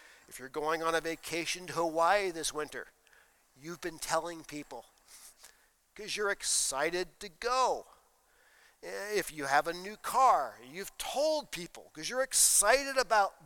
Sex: male